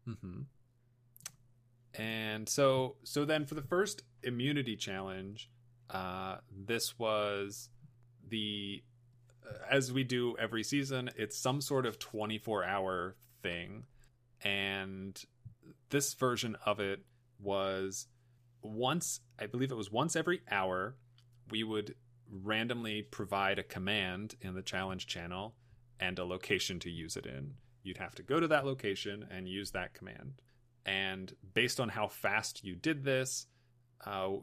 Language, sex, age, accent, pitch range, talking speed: English, male, 30-49, American, 100-125 Hz, 135 wpm